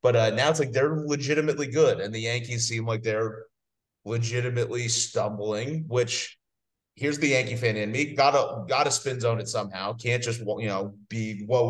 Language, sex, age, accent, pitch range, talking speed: English, male, 30-49, American, 105-125 Hz, 180 wpm